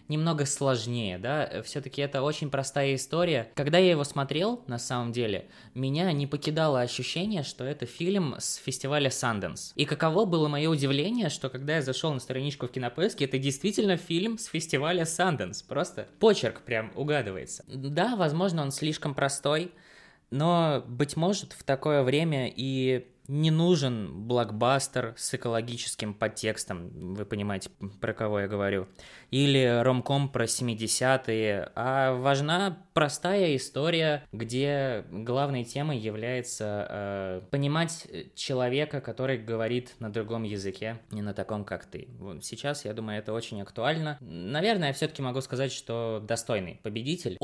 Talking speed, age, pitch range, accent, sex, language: 140 wpm, 20-39, 115-150 Hz, native, male, Russian